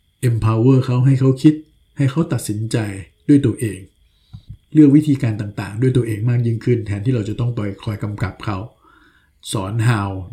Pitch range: 105-125 Hz